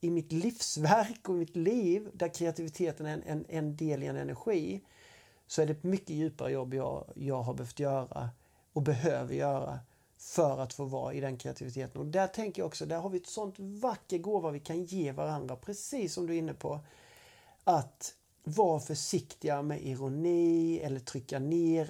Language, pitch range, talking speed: Swedish, 145-190 Hz, 185 wpm